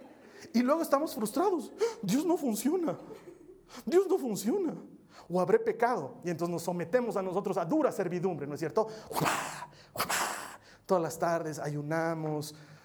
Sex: male